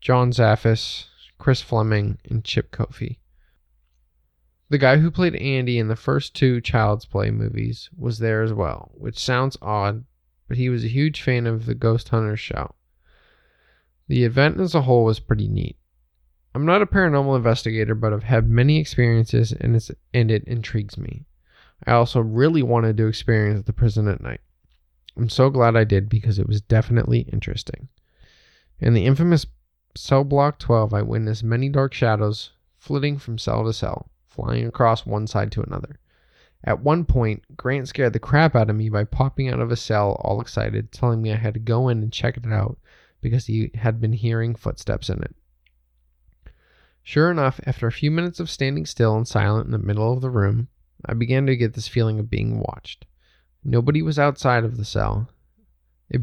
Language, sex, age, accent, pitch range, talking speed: English, male, 20-39, American, 105-130 Hz, 185 wpm